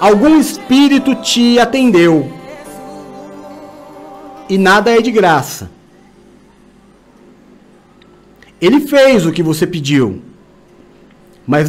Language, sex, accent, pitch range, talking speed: Portuguese, male, Brazilian, 170-255 Hz, 80 wpm